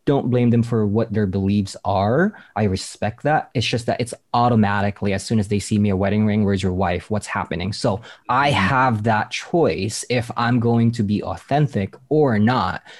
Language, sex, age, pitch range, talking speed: English, male, 20-39, 100-125 Hz, 200 wpm